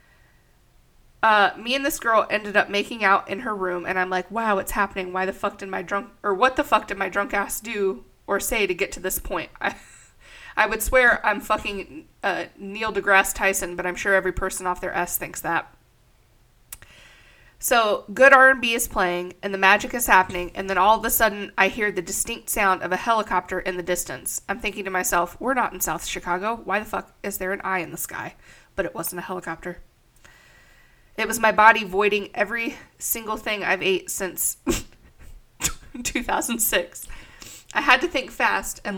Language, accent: English, American